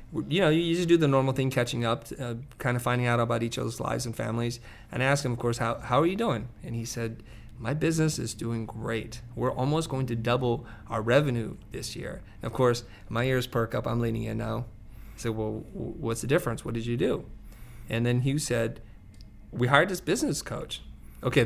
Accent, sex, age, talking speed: American, male, 30-49, 225 wpm